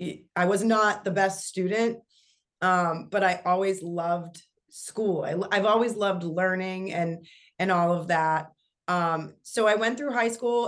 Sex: female